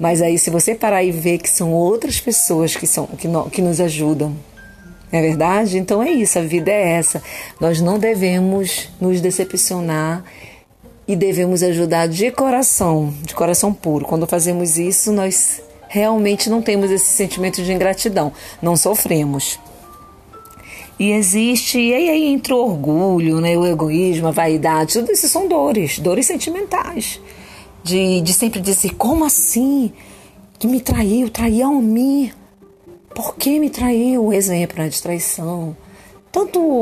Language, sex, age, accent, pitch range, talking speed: Portuguese, female, 40-59, Brazilian, 160-215 Hz, 150 wpm